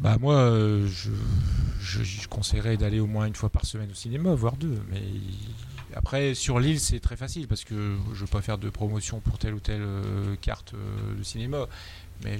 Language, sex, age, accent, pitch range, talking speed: French, male, 30-49, French, 100-110 Hz, 200 wpm